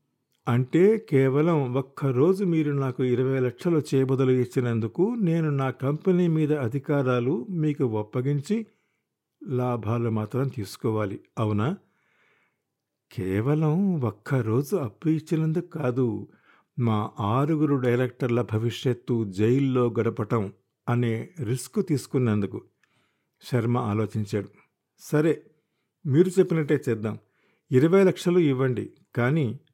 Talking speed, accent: 90 wpm, native